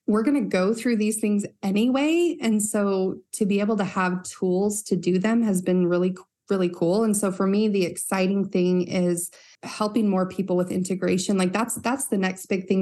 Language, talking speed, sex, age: English, 205 wpm, female, 20-39